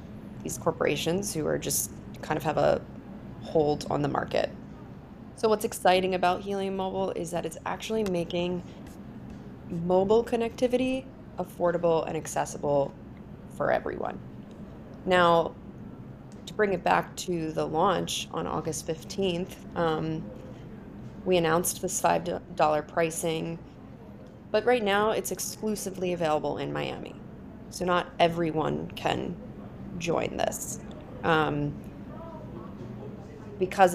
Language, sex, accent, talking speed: English, female, American, 115 wpm